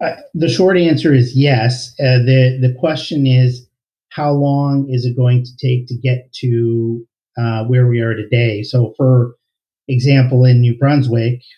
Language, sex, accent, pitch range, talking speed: English, male, American, 120-135 Hz, 165 wpm